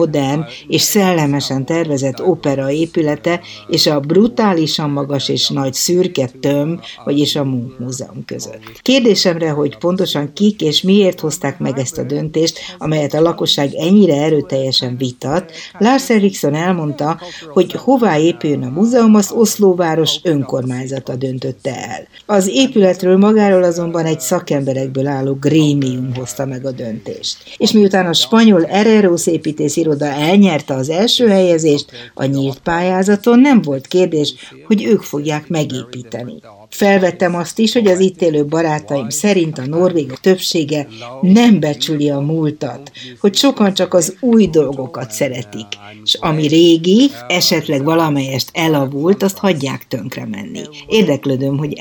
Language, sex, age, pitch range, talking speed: Hungarian, female, 60-79, 140-185 Hz, 135 wpm